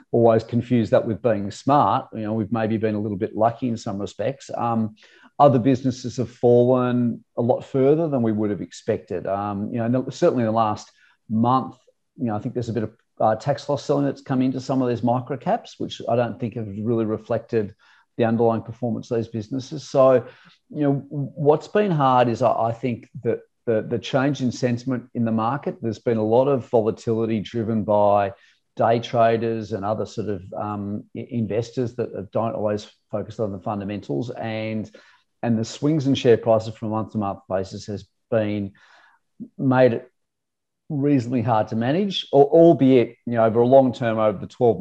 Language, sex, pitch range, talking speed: English, male, 110-130 Hz, 195 wpm